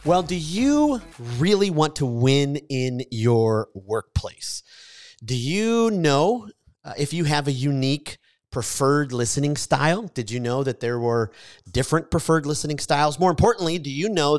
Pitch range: 120-150 Hz